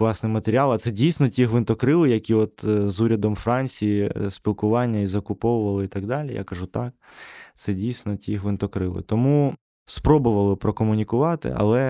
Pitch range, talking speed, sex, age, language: 100-130 Hz, 145 wpm, male, 20-39, Ukrainian